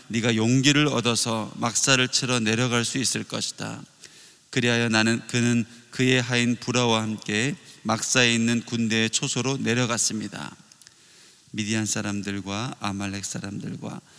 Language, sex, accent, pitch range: Korean, male, native, 105-125 Hz